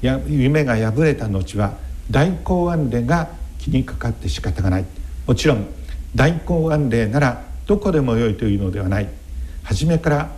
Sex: male